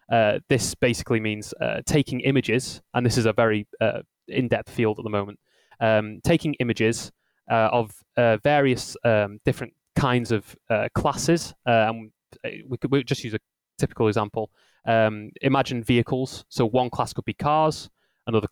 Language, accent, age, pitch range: English, British, 20-39, 110-130 Hz